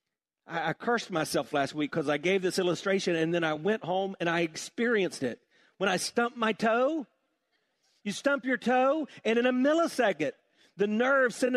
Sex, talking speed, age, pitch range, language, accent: male, 180 wpm, 50-69, 190-285 Hz, English, American